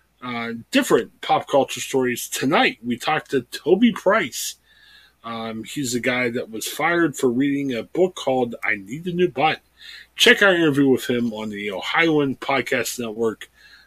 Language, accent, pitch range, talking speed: English, American, 115-170 Hz, 165 wpm